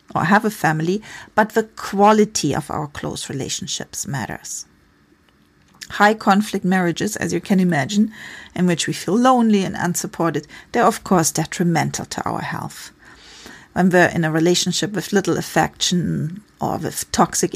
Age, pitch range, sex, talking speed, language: 40-59, 180-220 Hz, female, 145 wpm, English